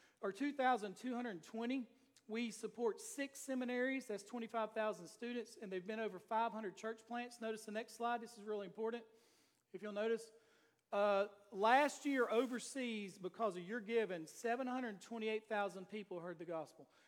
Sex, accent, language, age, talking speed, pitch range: male, American, English, 40-59, 140 wpm, 200-240 Hz